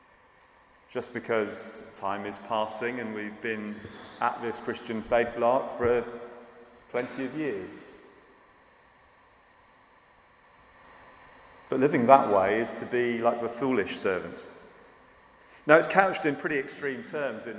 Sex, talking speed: male, 125 wpm